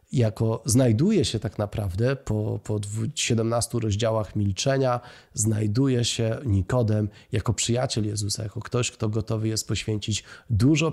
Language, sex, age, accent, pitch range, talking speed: Polish, male, 30-49, native, 105-125 Hz, 125 wpm